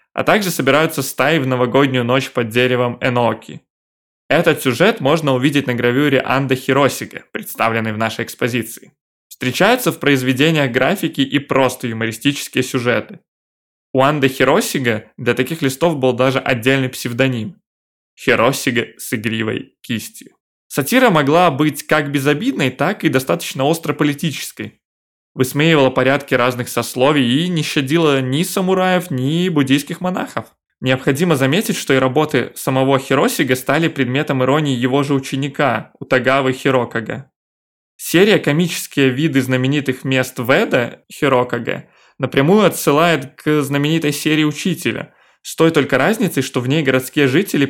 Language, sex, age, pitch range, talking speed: Russian, male, 20-39, 125-150 Hz, 130 wpm